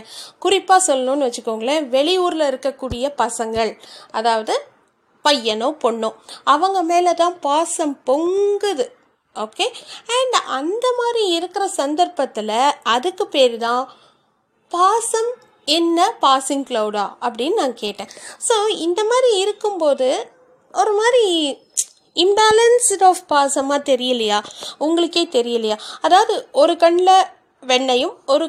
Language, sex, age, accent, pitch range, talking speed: Tamil, female, 30-49, native, 255-360 Hz, 40 wpm